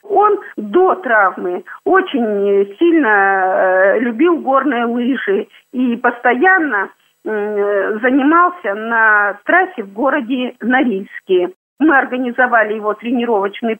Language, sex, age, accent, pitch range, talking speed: Russian, female, 40-59, native, 215-330 Hz, 85 wpm